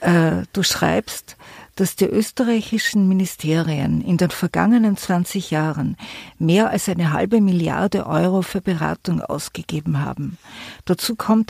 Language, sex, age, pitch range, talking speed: German, female, 50-69, 175-215 Hz, 120 wpm